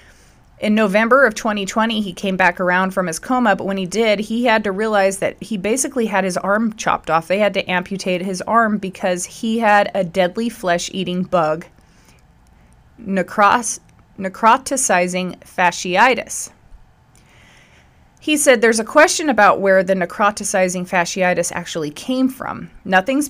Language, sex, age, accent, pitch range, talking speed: English, female, 30-49, American, 175-210 Hz, 145 wpm